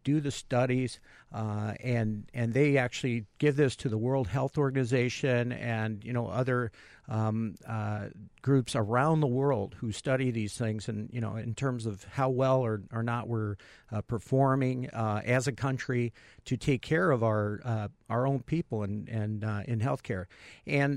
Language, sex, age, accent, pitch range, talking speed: English, male, 50-69, American, 110-135 Hz, 180 wpm